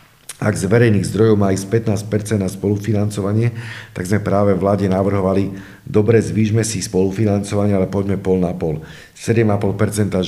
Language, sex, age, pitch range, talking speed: Slovak, male, 50-69, 95-110 Hz, 140 wpm